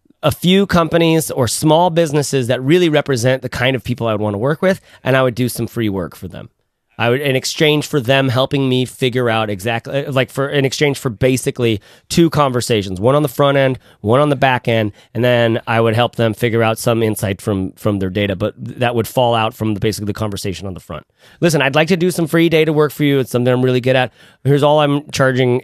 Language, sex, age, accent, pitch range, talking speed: English, male, 30-49, American, 115-145 Hz, 245 wpm